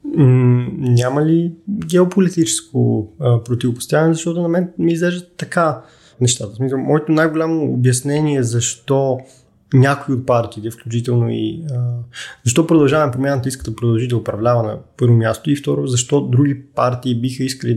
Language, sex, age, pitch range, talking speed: English, male, 20-39, 120-145 Hz, 135 wpm